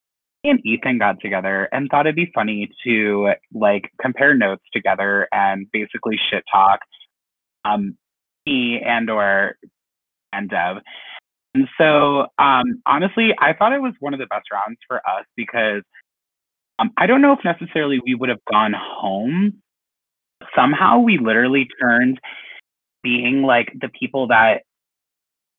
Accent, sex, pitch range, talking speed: American, male, 110-150 Hz, 145 wpm